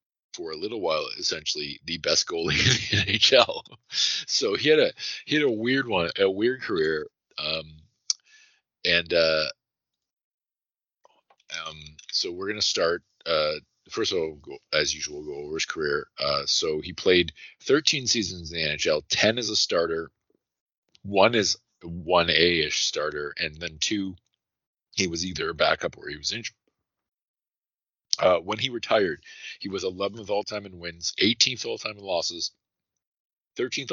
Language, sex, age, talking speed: English, male, 40-59, 150 wpm